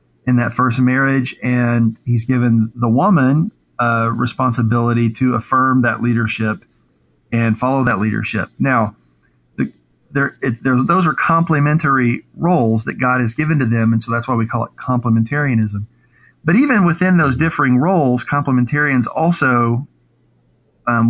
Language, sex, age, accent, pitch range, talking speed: English, male, 40-59, American, 115-135 Hz, 150 wpm